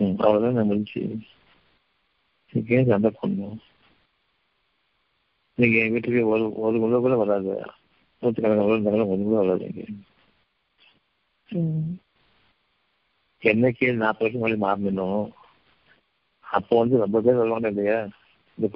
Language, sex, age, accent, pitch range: Tamil, male, 50-69, native, 100-120 Hz